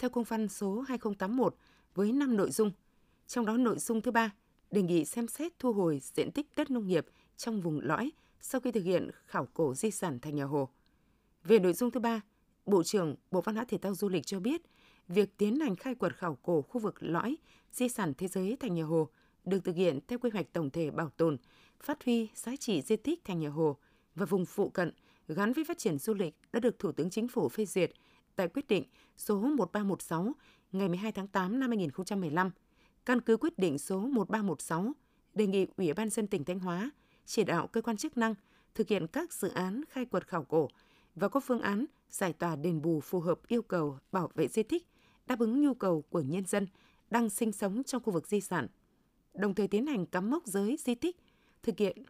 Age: 20-39